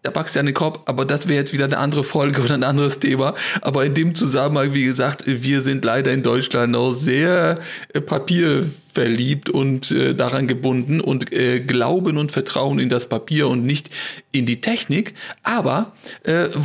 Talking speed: 185 wpm